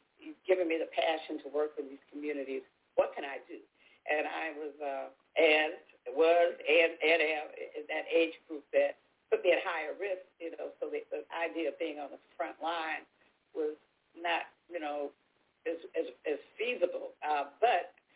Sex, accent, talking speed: female, American, 180 wpm